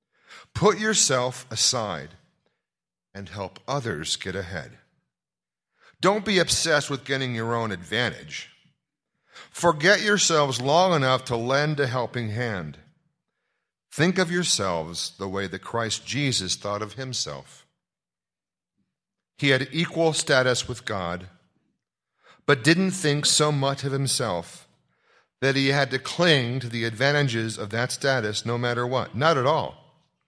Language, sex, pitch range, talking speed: English, male, 100-140 Hz, 130 wpm